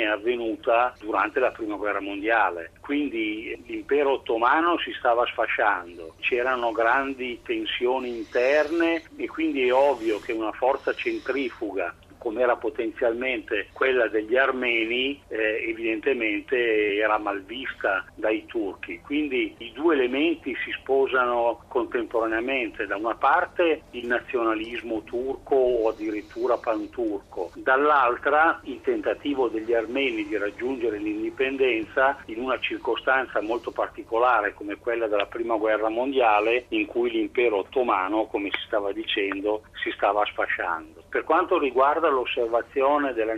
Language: Italian